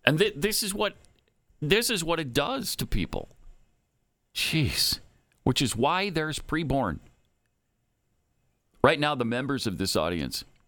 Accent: American